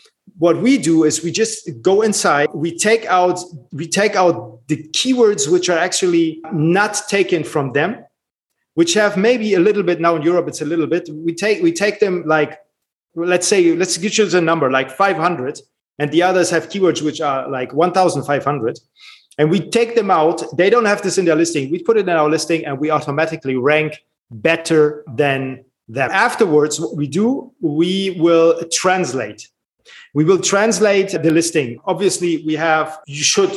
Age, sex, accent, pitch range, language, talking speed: 30-49, male, German, 155-190 Hz, English, 180 wpm